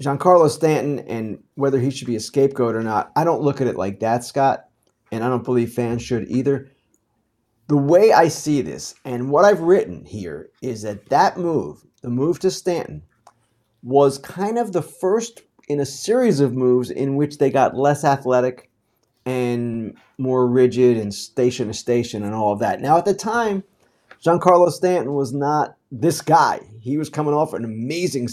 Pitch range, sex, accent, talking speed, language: 115-145 Hz, male, American, 185 wpm, English